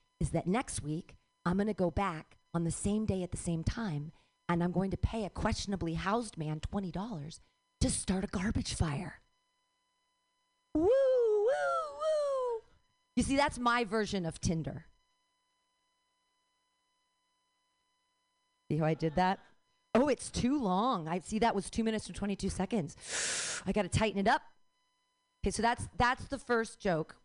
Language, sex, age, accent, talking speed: English, female, 40-59, American, 160 wpm